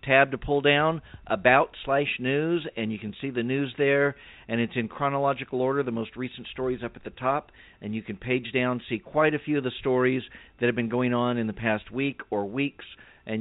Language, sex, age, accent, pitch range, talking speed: English, male, 50-69, American, 115-140 Hz, 230 wpm